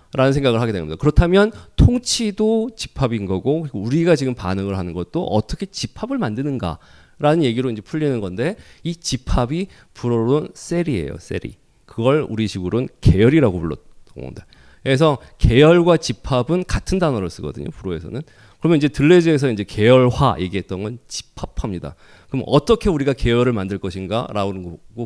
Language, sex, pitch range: Korean, male, 95-145 Hz